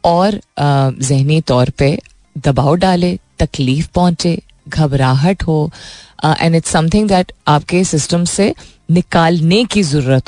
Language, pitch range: Hindi, 145-200 Hz